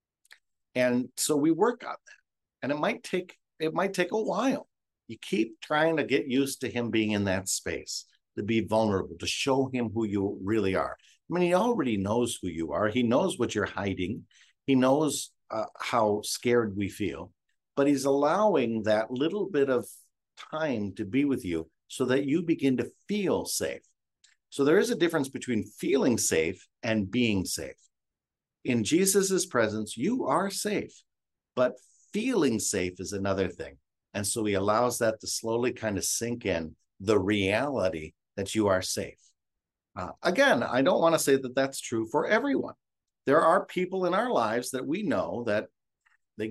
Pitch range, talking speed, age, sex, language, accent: 105-150 Hz, 180 wpm, 50-69, male, English, American